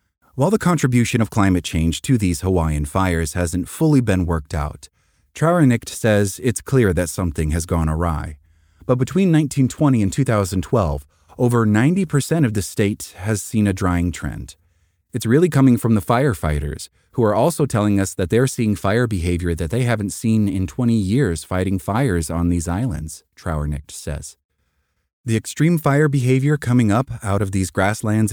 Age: 30-49